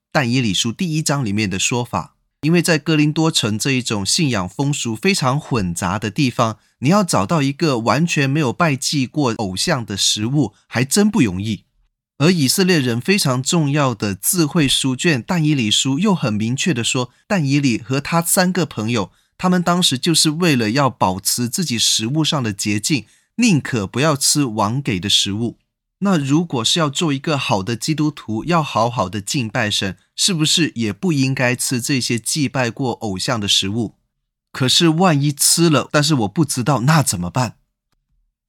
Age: 20-39